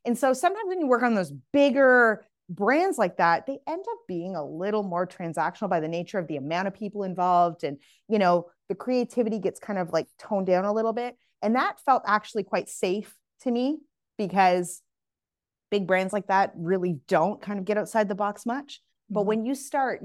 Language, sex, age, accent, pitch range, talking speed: English, female, 30-49, American, 165-215 Hz, 205 wpm